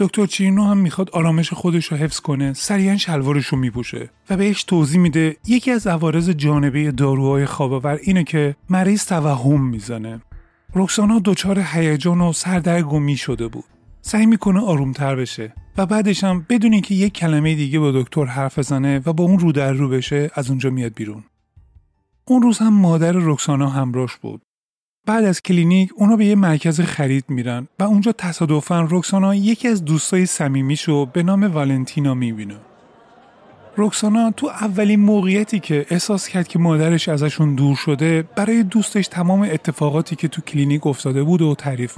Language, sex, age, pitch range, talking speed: Persian, male, 30-49, 140-195 Hz, 160 wpm